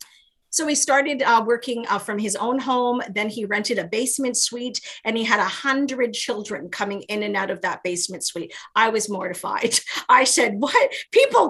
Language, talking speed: English, 195 wpm